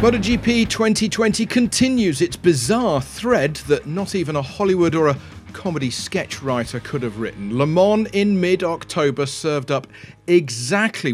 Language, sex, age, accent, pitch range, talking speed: English, male, 40-59, British, 135-185 Hz, 140 wpm